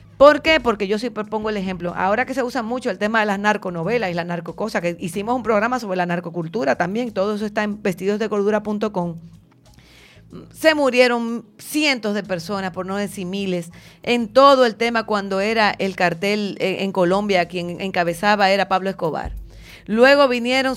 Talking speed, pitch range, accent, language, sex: 175 wpm, 195-240 Hz, American, English, female